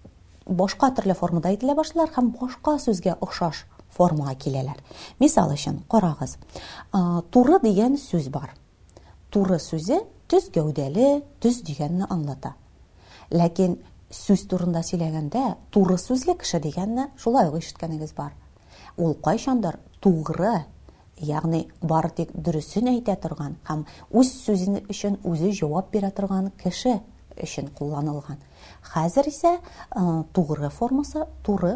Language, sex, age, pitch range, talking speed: Russian, female, 30-49, 155-235 Hz, 95 wpm